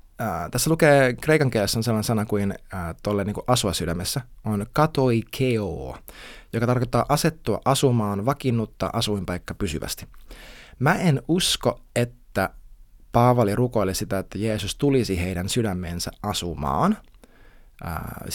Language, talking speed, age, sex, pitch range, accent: Finnish, 120 wpm, 20-39, male, 100-135 Hz, native